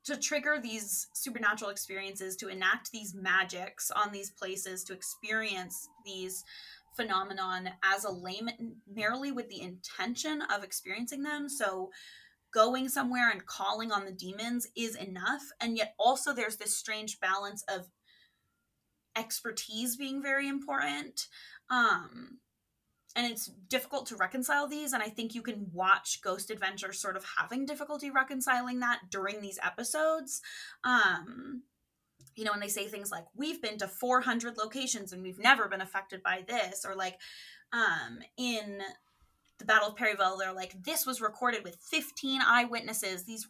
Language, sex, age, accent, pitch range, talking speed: English, female, 20-39, American, 195-255 Hz, 150 wpm